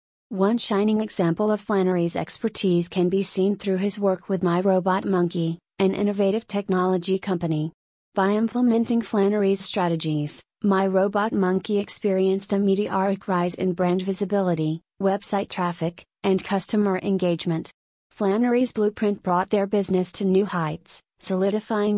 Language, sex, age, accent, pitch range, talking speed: English, female, 30-49, American, 180-205 Hz, 130 wpm